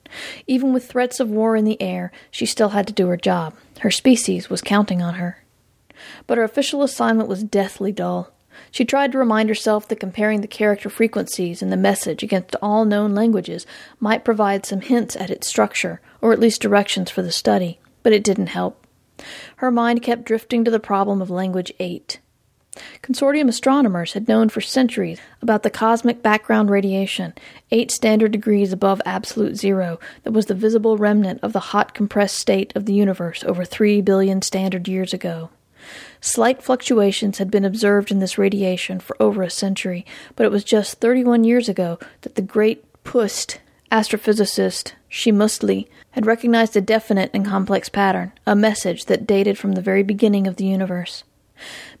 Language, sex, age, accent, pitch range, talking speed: English, female, 40-59, American, 190-225 Hz, 175 wpm